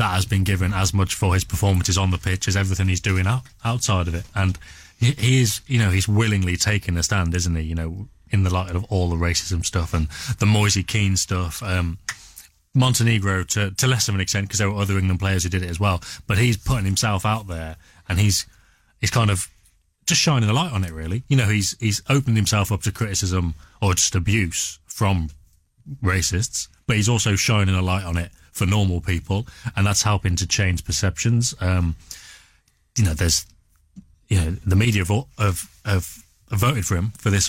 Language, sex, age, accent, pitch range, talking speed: English, male, 30-49, British, 90-105 Hz, 210 wpm